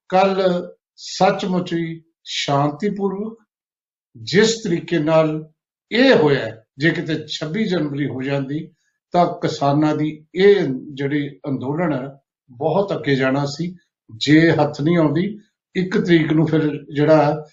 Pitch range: 145-195 Hz